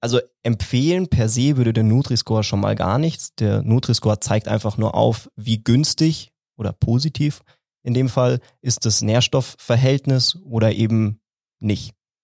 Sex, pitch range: male, 105-130 Hz